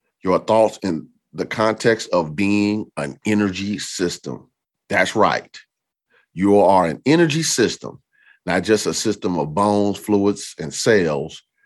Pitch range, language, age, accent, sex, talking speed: 90-120 Hz, English, 40-59, American, male, 135 wpm